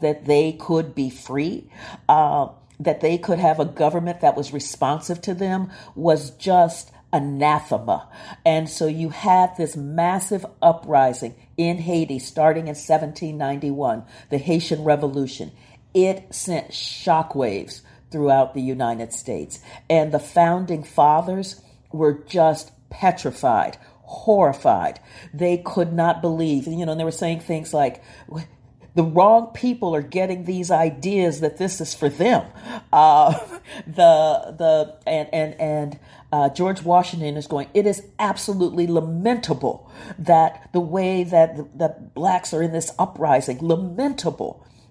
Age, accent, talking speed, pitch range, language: 50-69, American, 135 wpm, 150-180 Hz, English